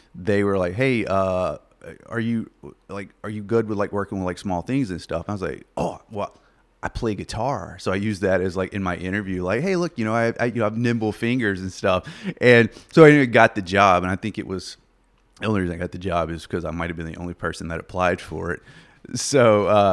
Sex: male